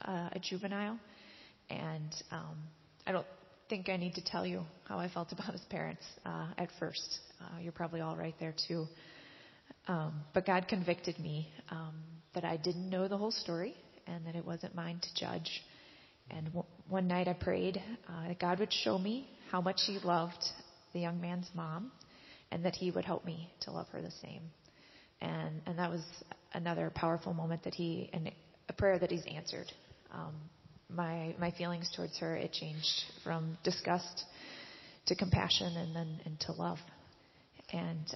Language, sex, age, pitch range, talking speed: English, female, 30-49, 165-185 Hz, 175 wpm